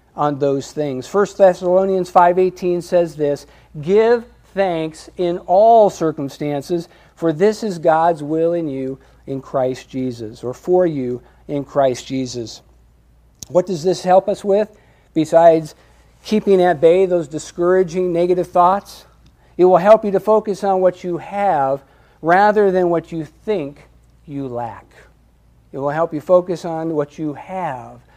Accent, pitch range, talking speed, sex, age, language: American, 145-185 Hz, 145 wpm, male, 50-69, English